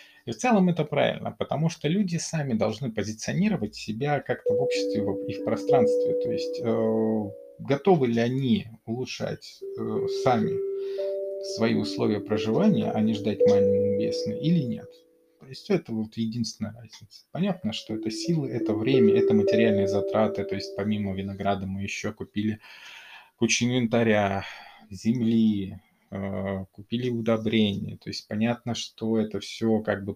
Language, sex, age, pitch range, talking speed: Russian, male, 20-39, 105-175 Hz, 140 wpm